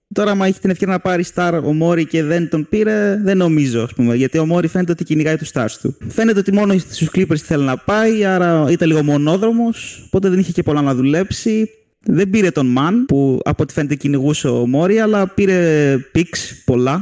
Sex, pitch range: male, 140-185 Hz